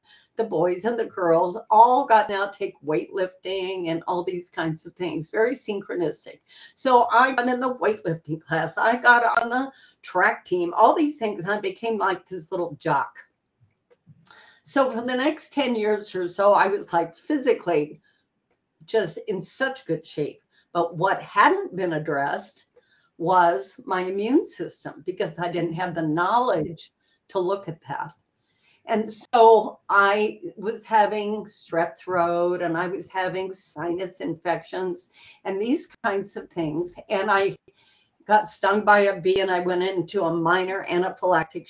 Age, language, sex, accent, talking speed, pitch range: 50-69, English, female, American, 155 wpm, 175-225 Hz